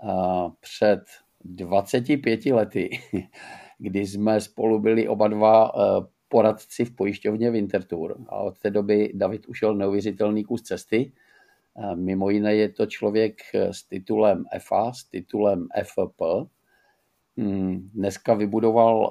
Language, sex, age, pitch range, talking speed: Czech, male, 50-69, 95-110 Hz, 110 wpm